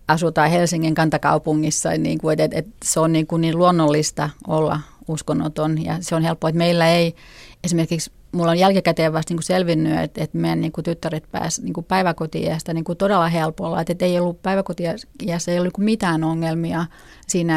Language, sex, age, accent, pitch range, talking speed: Finnish, female, 30-49, native, 160-175 Hz, 175 wpm